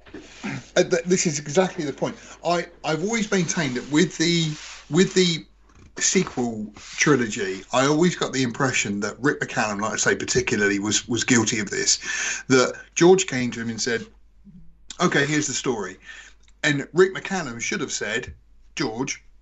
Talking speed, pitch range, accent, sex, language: 160 wpm, 125-170 Hz, British, male, English